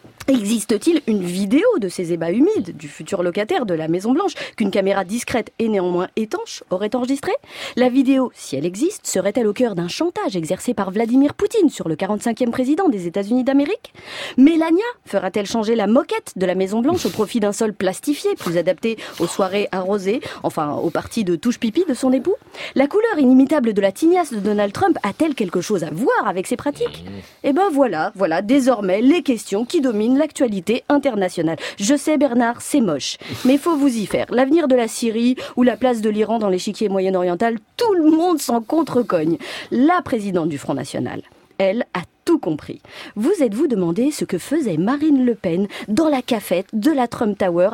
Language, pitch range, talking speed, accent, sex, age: French, 205-285 Hz, 185 wpm, French, female, 30-49